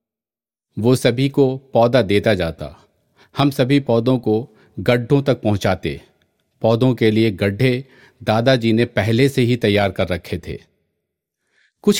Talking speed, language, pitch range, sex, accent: 135 wpm, Hindi, 95-130 Hz, male, native